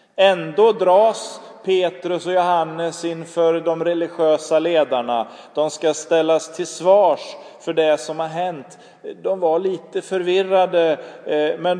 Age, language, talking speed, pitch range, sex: 30-49, Swedish, 120 wpm, 150-195 Hz, male